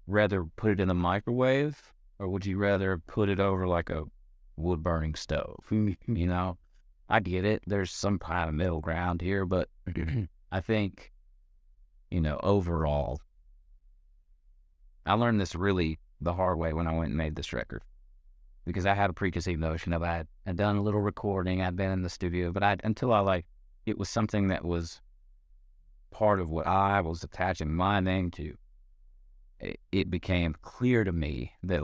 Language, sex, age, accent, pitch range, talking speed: English, male, 30-49, American, 80-100 Hz, 175 wpm